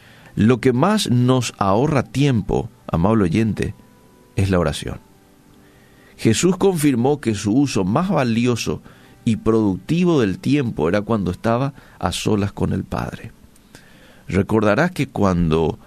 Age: 50-69